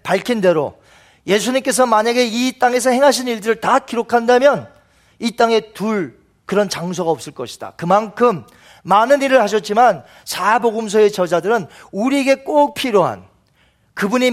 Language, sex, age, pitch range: Korean, male, 40-59, 195-255 Hz